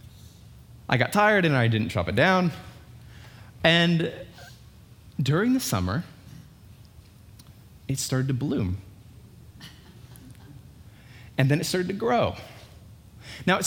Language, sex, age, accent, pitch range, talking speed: English, male, 20-39, American, 105-150 Hz, 110 wpm